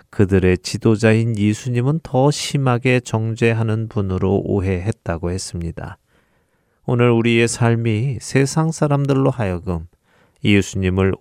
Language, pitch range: Korean, 90-115 Hz